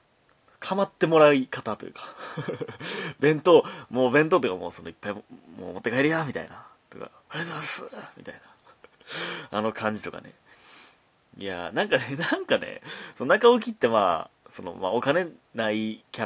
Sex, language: male, Japanese